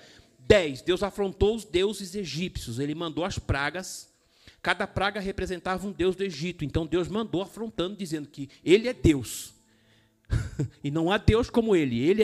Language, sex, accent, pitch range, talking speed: Portuguese, male, Brazilian, 120-195 Hz, 155 wpm